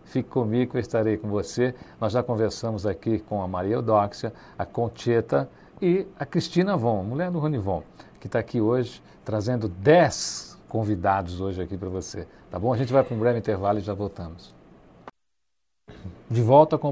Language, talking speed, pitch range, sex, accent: Portuguese, 175 wpm, 105-135 Hz, male, Brazilian